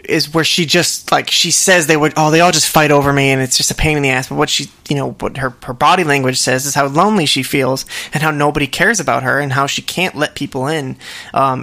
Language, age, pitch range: English, 20-39, 135-165 Hz